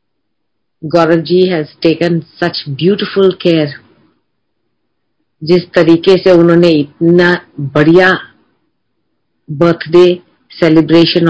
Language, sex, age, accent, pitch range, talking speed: Hindi, female, 50-69, native, 155-175 Hz, 80 wpm